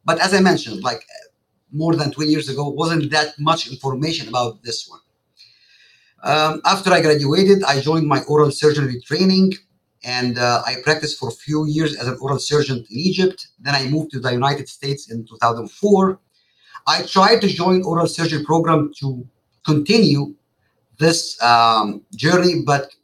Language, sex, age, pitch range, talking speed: English, male, 50-69, 135-175 Hz, 165 wpm